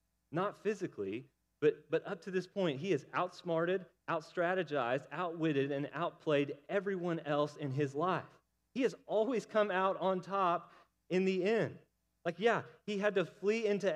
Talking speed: 160 wpm